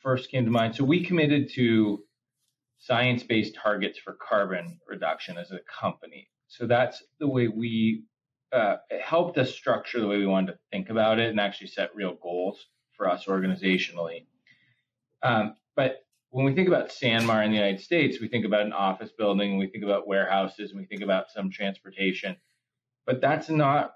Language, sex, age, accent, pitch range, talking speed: English, male, 30-49, American, 100-125 Hz, 185 wpm